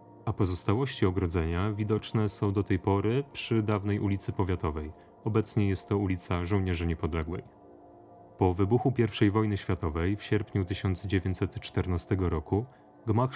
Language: Polish